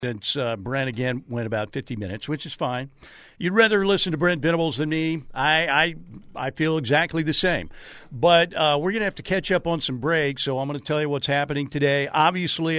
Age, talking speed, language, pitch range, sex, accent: 50-69, 225 wpm, English, 130-160 Hz, male, American